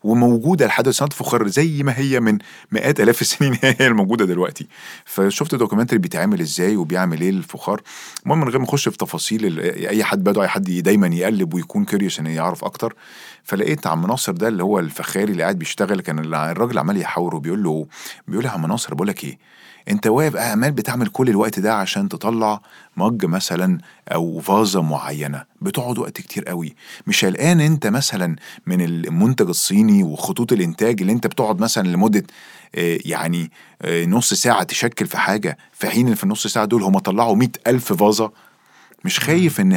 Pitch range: 100-160 Hz